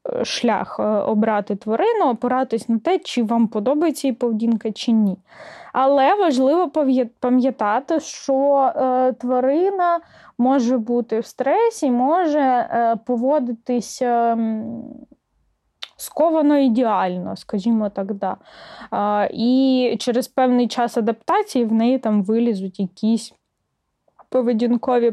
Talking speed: 95 wpm